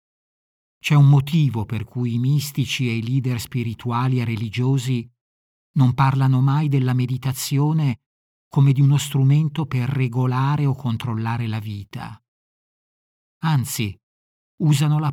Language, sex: Italian, male